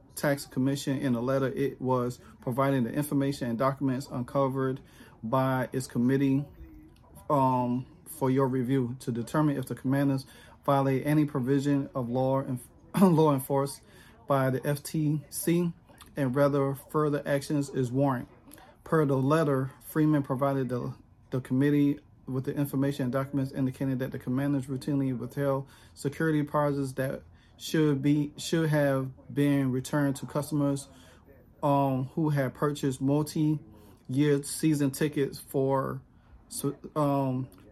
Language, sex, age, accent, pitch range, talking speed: English, male, 40-59, American, 130-145 Hz, 130 wpm